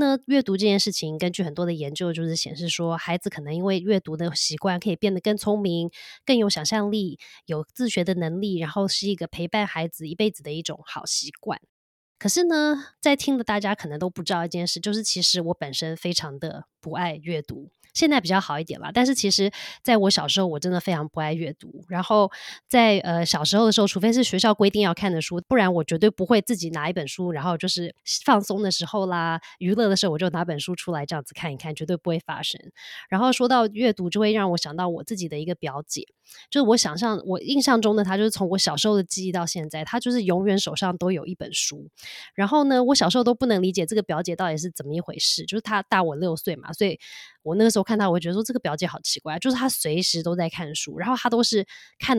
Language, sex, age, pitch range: Chinese, female, 20-39, 170-215 Hz